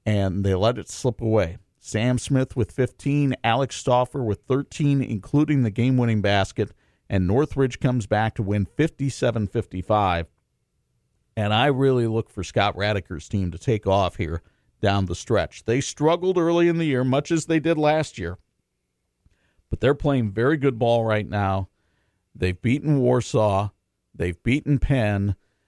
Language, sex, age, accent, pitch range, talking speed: English, male, 50-69, American, 100-135 Hz, 155 wpm